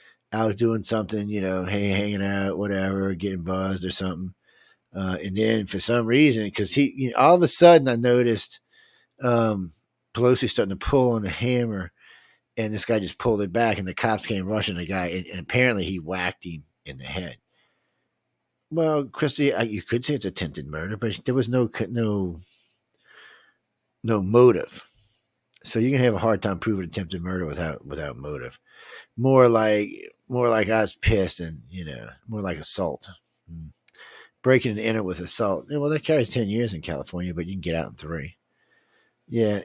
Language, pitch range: English, 95-125 Hz